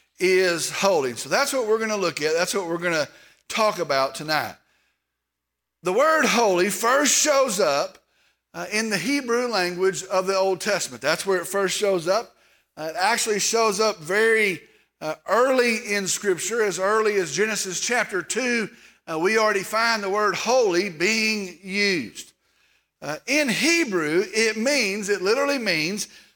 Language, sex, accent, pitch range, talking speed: English, male, American, 190-235 Hz, 160 wpm